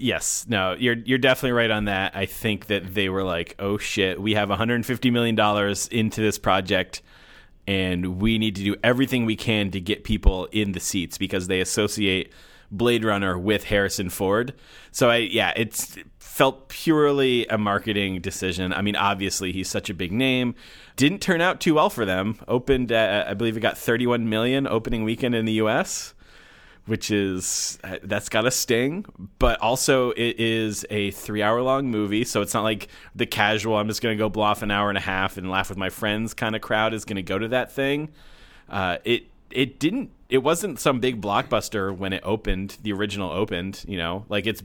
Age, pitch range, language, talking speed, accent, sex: 30-49, 95-115 Hz, English, 200 wpm, American, male